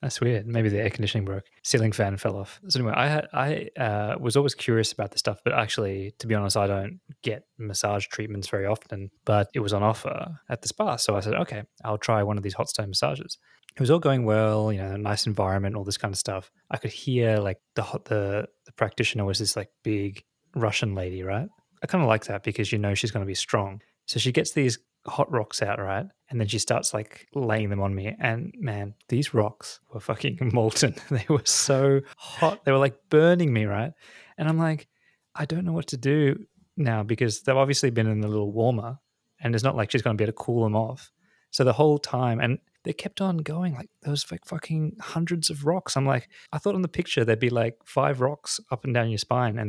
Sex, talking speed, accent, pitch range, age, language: male, 240 wpm, Australian, 105-140 Hz, 20-39, English